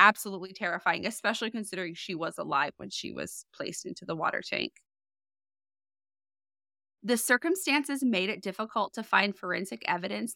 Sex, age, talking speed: female, 20-39, 140 wpm